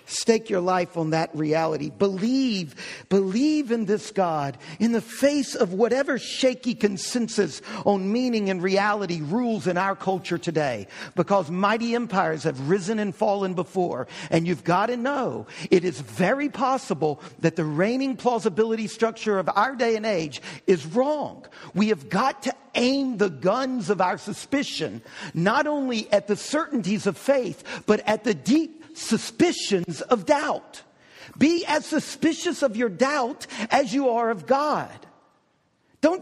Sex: male